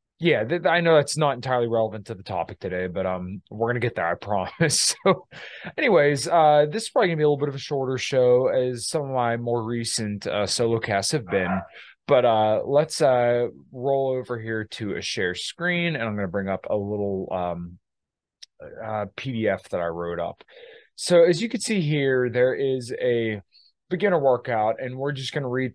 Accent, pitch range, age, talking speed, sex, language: American, 110-145 Hz, 20-39, 210 wpm, male, English